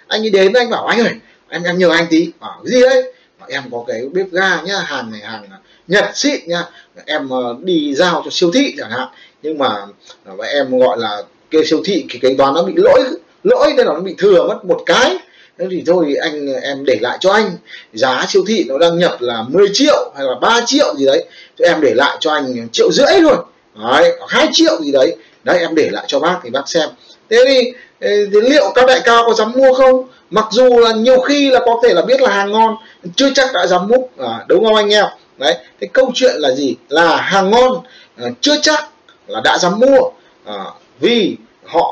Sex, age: male, 20-39